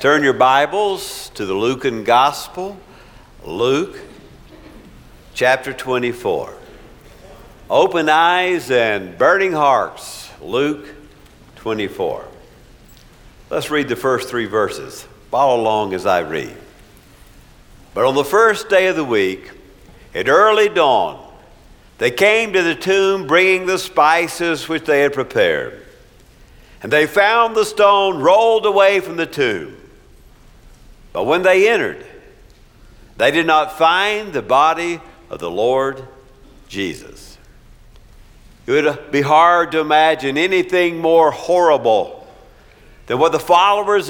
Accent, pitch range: American, 155-210 Hz